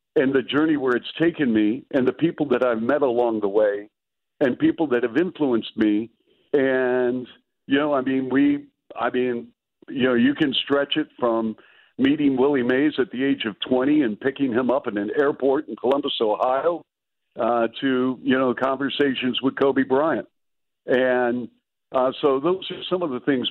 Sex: male